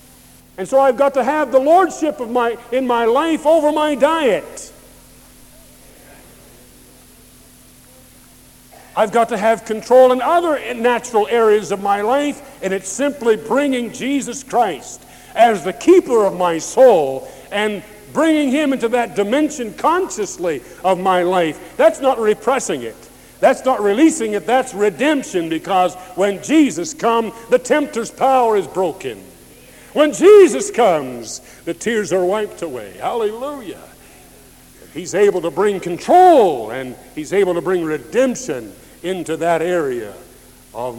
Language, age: English, 50-69